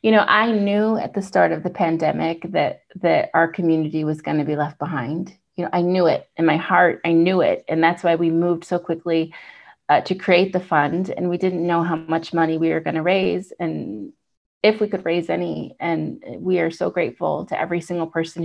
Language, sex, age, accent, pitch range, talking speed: English, female, 30-49, American, 160-185 Hz, 230 wpm